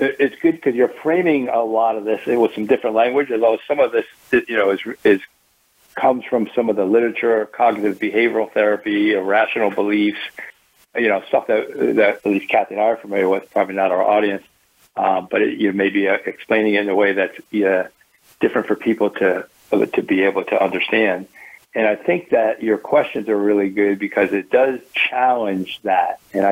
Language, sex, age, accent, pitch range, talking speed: English, male, 50-69, American, 100-110 Hz, 195 wpm